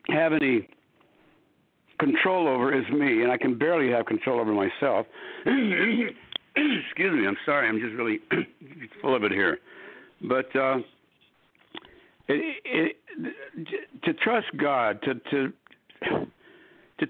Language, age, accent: English, 60-79, American